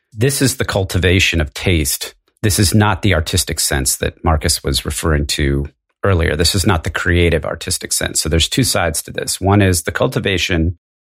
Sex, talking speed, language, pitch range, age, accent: male, 190 wpm, English, 80-95 Hz, 40-59, American